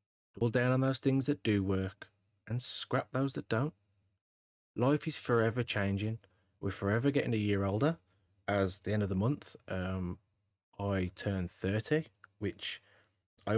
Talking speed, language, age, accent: 155 wpm, English, 30-49, British